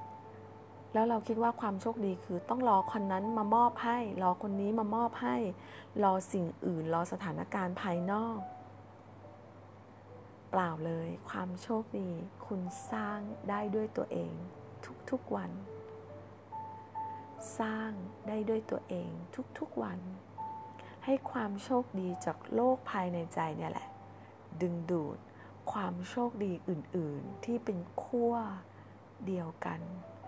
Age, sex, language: 30-49, female, English